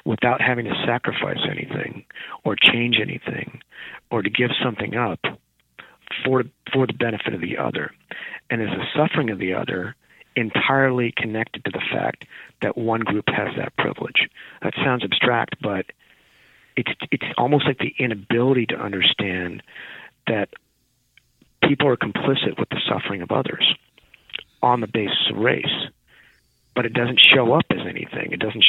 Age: 50-69